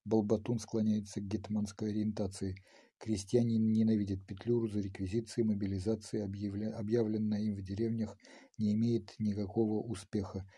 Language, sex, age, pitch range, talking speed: Ukrainian, male, 50-69, 100-115 Hz, 110 wpm